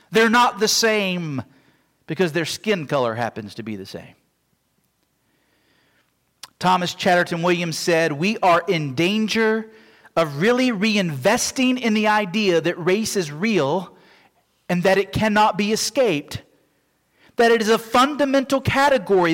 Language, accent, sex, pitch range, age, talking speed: English, American, male, 165-240 Hz, 40-59, 135 wpm